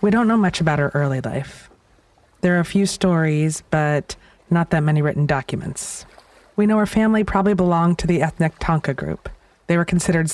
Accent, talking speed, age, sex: American, 190 wpm, 30-49, female